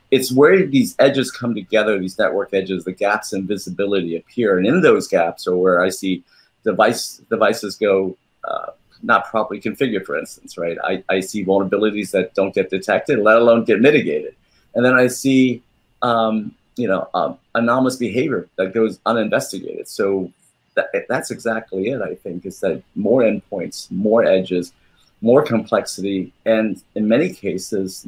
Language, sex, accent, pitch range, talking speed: English, male, American, 95-120 Hz, 160 wpm